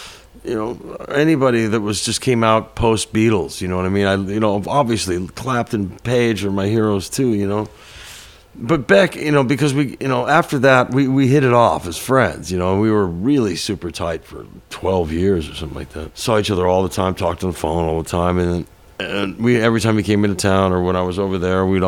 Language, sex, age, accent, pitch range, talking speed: English, male, 50-69, American, 90-115 Hz, 240 wpm